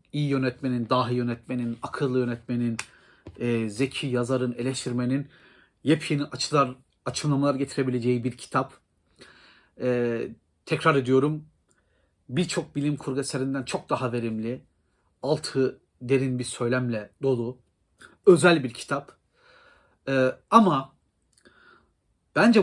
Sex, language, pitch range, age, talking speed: male, Turkish, 120-140 Hz, 40-59, 100 wpm